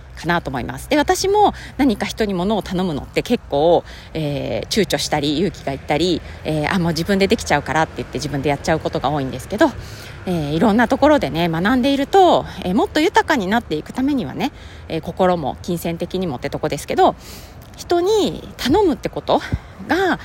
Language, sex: Japanese, female